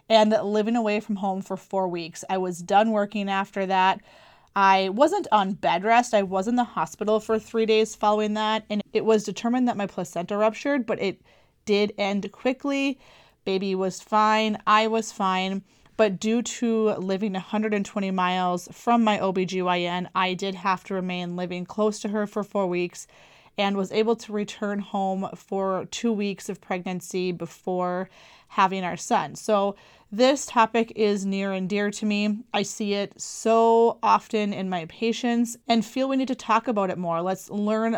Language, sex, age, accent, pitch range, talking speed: English, female, 30-49, American, 190-220 Hz, 175 wpm